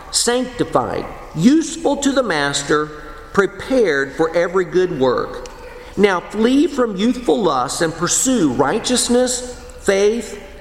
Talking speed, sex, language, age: 105 wpm, male, English, 50-69